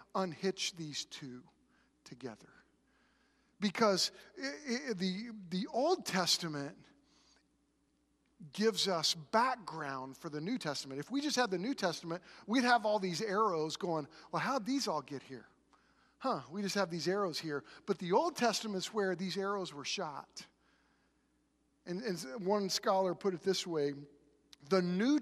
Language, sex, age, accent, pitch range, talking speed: English, male, 50-69, American, 150-215 Hz, 145 wpm